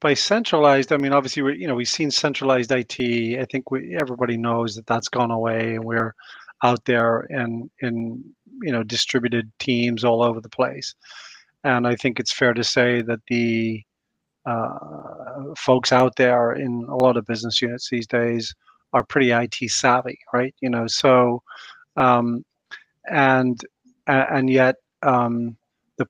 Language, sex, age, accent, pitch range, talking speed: English, male, 40-59, American, 120-130 Hz, 155 wpm